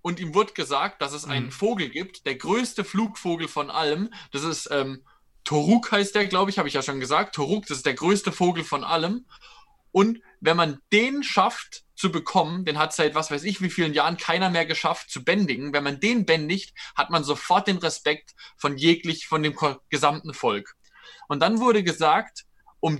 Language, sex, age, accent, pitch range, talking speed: German, male, 20-39, German, 150-205 Hz, 200 wpm